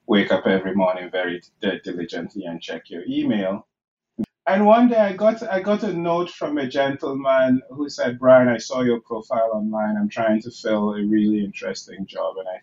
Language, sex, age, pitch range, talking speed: English, male, 30-49, 100-130 Hz, 195 wpm